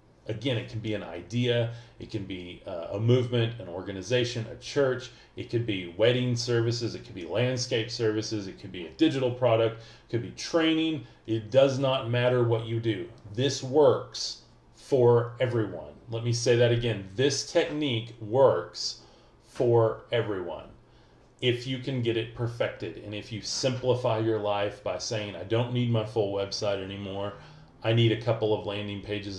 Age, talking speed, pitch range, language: 40-59, 175 wpm, 105-120 Hz, English